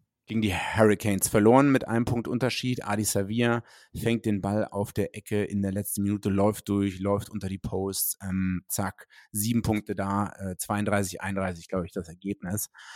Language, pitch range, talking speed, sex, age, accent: German, 95-115 Hz, 175 wpm, male, 30-49, German